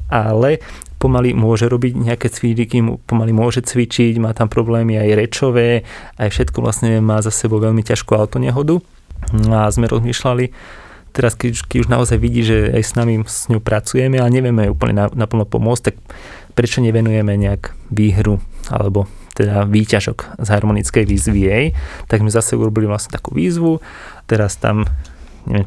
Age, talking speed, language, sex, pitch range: 20-39, 155 wpm, Slovak, male, 105-115 Hz